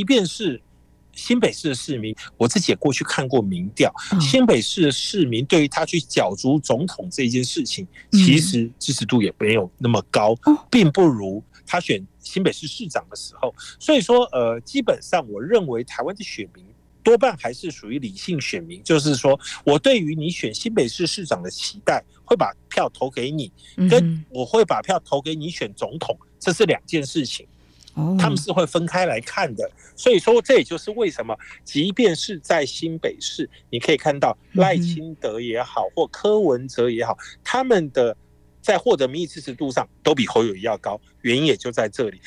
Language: Chinese